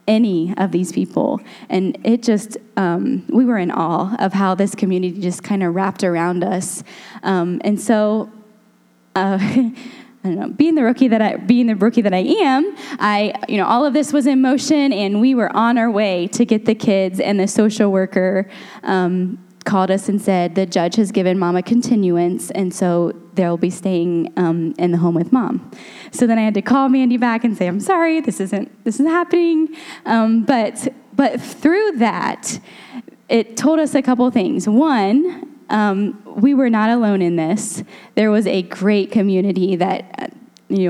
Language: English